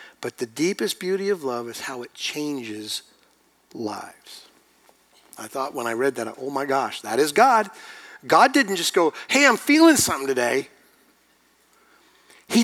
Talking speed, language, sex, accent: 155 wpm, English, male, American